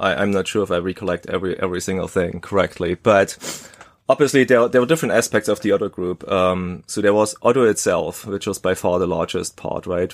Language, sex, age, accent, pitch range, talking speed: English, male, 20-39, German, 90-105 Hz, 215 wpm